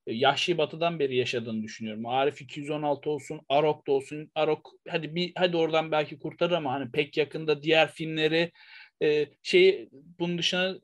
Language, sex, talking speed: Turkish, male, 150 wpm